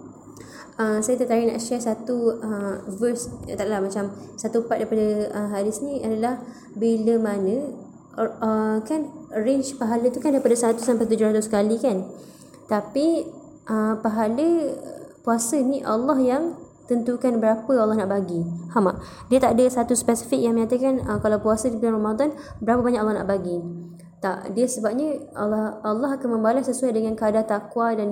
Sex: female